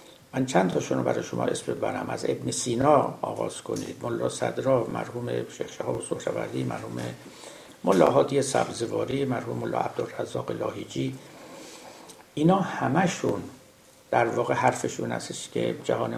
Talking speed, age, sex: 125 wpm, 60-79, male